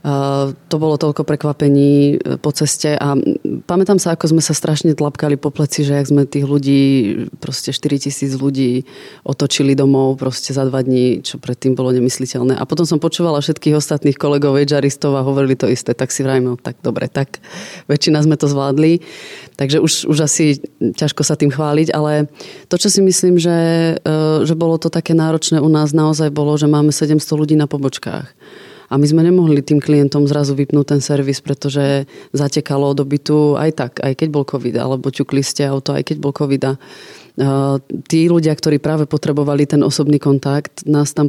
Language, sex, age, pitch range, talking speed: Czech, female, 30-49, 140-155 Hz, 180 wpm